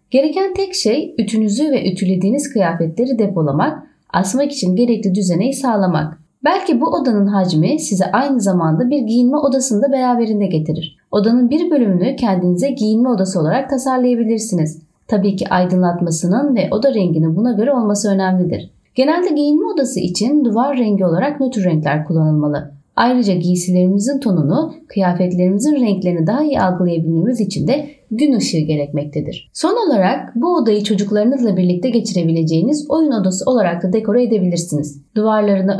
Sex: female